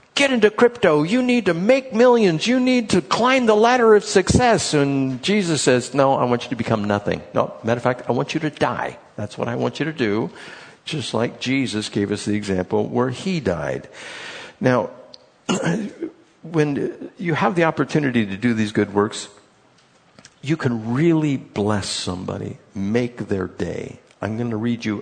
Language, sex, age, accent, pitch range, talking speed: English, male, 60-79, American, 95-140 Hz, 180 wpm